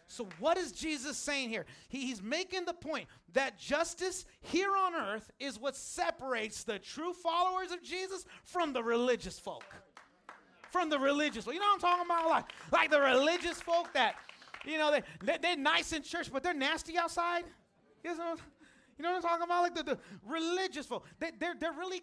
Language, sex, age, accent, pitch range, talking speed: English, male, 30-49, American, 230-325 Hz, 195 wpm